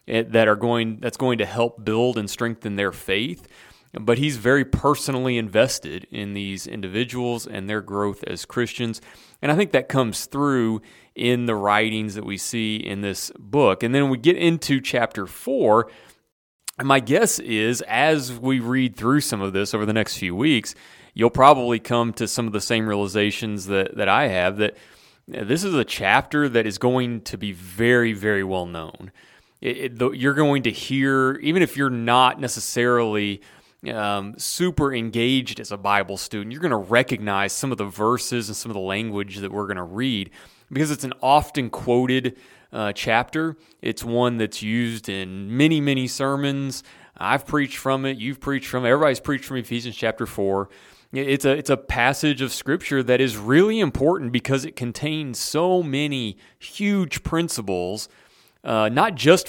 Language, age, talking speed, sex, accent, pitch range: English, 30-49, 180 wpm, male, American, 105-135 Hz